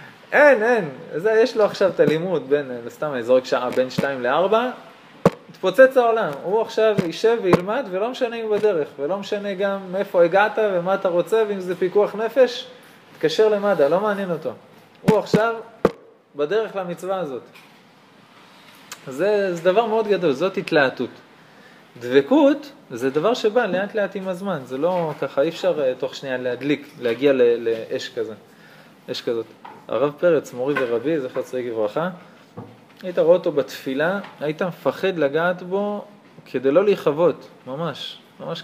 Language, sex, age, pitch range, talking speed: Hebrew, male, 20-39, 145-220 Hz, 155 wpm